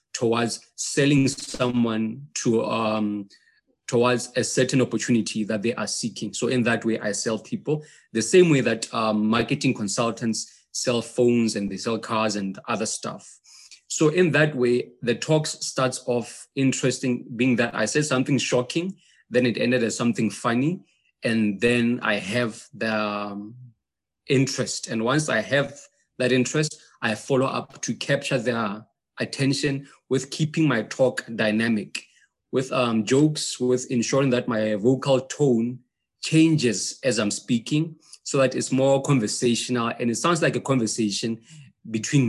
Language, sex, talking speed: English, male, 150 wpm